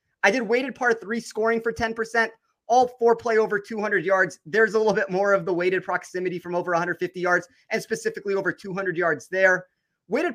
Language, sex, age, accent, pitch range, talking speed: English, male, 30-49, American, 185-225 Hz, 195 wpm